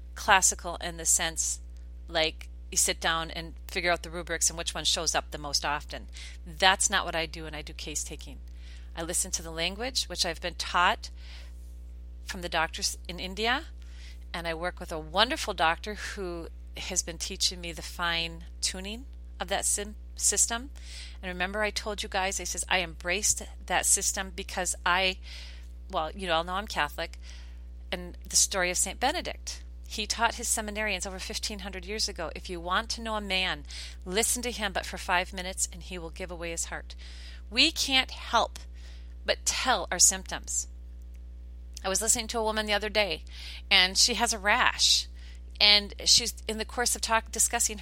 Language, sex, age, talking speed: English, female, 40-59, 185 wpm